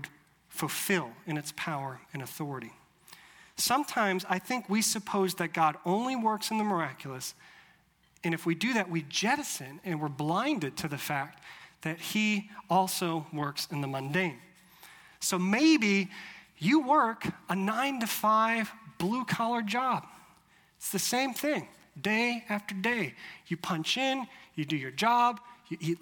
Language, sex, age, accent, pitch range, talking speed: English, male, 40-59, American, 165-230 Hz, 150 wpm